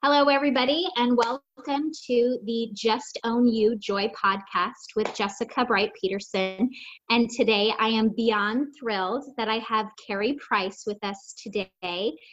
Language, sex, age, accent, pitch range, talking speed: English, female, 20-39, American, 200-245 Hz, 140 wpm